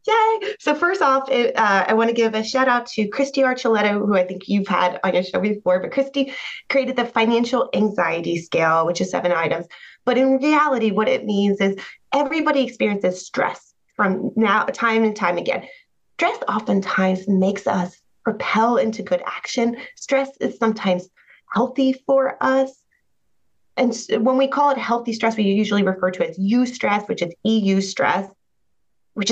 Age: 20-39